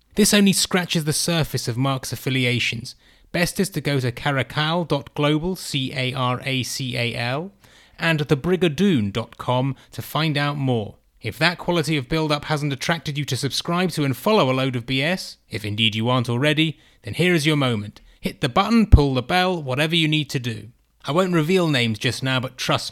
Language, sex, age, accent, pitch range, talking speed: English, male, 30-49, British, 130-170 Hz, 175 wpm